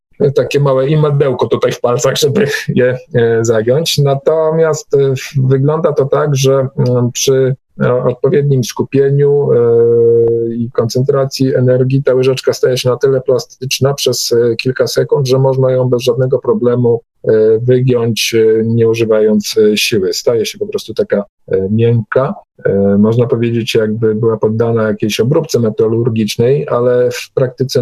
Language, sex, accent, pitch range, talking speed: Polish, male, native, 115-140 Hz, 125 wpm